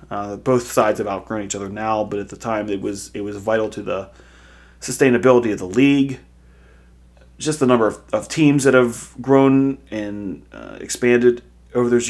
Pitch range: 100-125 Hz